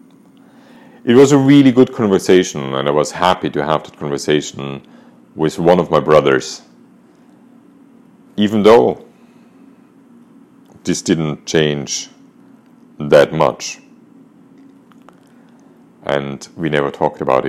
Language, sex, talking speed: English, male, 105 wpm